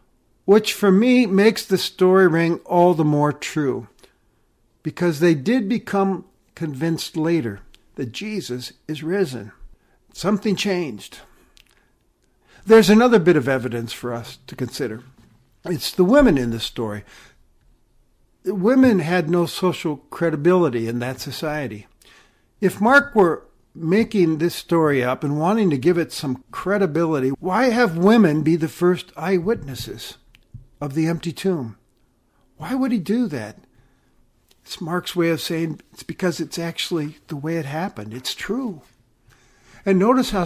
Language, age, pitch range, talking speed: English, 60-79, 130-190 Hz, 140 wpm